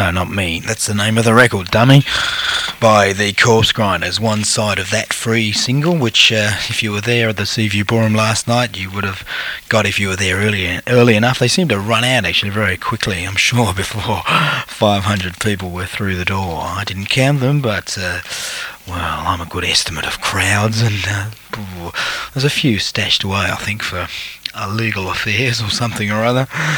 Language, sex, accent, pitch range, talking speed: English, male, Australian, 95-115 Hz, 200 wpm